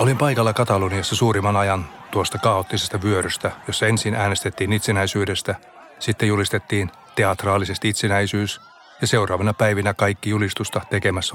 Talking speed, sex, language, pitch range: 115 wpm, male, Finnish, 100-110 Hz